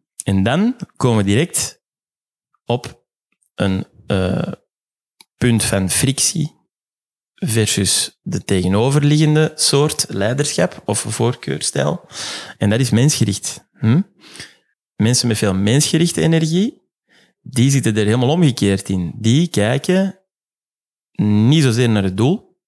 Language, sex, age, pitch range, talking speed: Dutch, male, 30-49, 105-145 Hz, 110 wpm